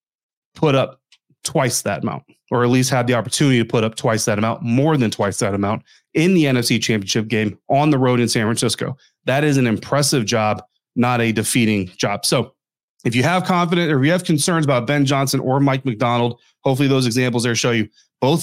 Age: 30-49